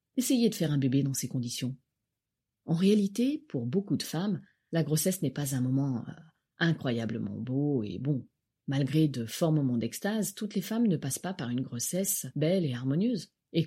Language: French